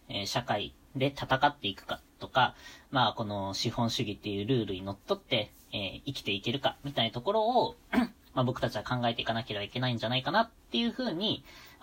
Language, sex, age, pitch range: Japanese, female, 20-39, 115-175 Hz